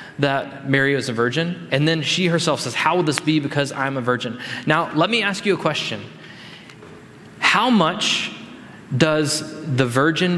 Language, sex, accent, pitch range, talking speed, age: English, male, American, 130-155 Hz, 175 wpm, 20-39